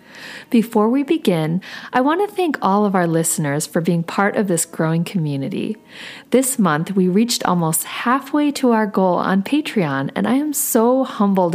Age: 40-59